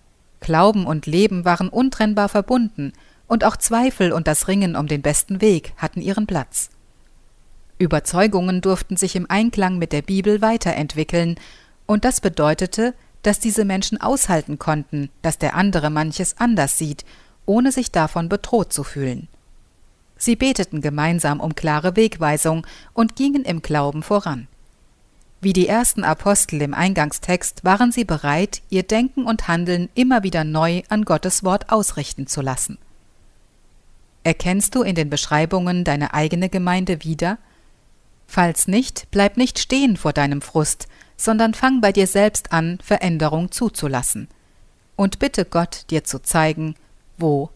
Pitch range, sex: 150-205 Hz, female